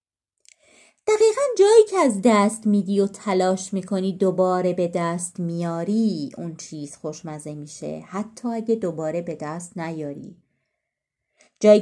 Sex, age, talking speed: female, 30-49, 120 wpm